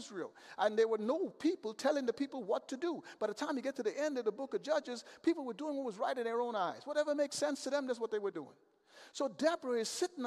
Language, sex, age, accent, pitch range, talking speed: English, male, 50-69, American, 220-295 Hz, 280 wpm